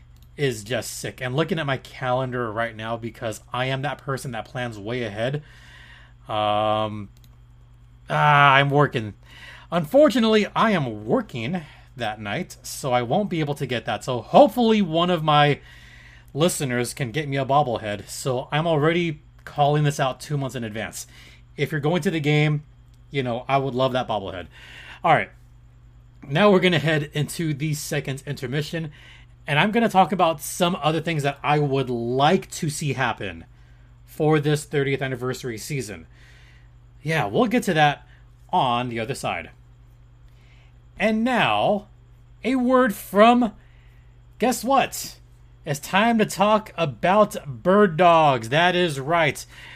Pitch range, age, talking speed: 110-165 Hz, 30-49, 155 wpm